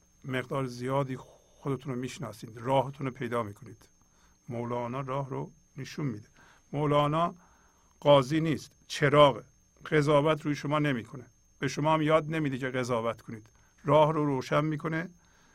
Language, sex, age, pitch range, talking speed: Persian, male, 50-69, 125-145 Hz, 130 wpm